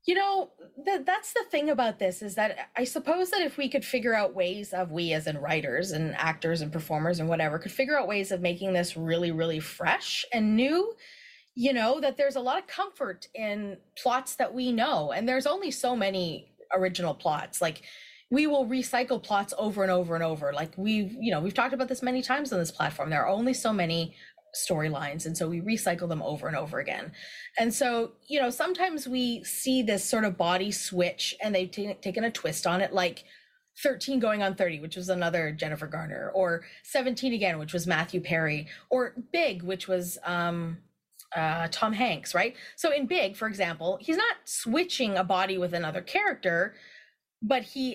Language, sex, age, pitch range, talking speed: English, female, 20-39, 175-255 Hz, 200 wpm